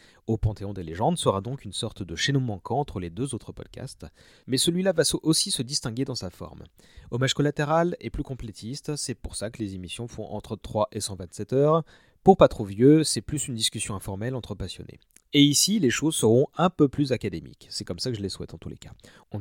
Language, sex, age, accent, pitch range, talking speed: French, male, 30-49, French, 100-145 Hz, 230 wpm